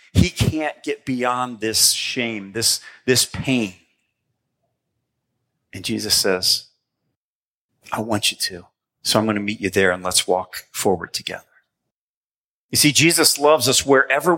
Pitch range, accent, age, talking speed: 110-140 Hz, American, 40-59, 140 wpm